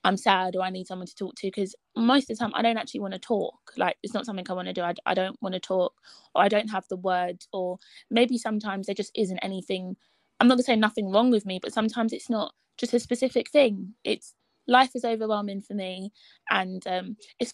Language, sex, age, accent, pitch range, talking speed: English, female, 20-39, British, 190-240 Hz, 250 wpm